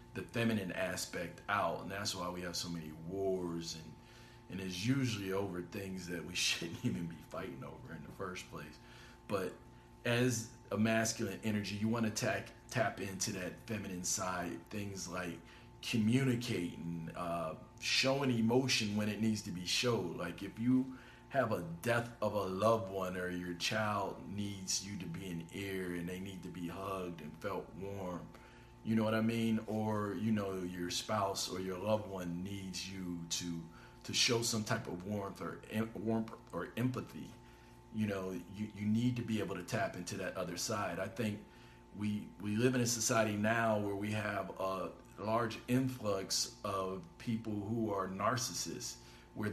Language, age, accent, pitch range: English, 40-59, American, 90-115 Hz